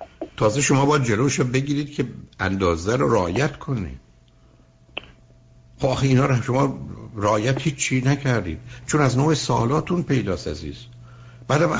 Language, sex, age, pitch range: Persian, male, 60-79, 105-135 Hz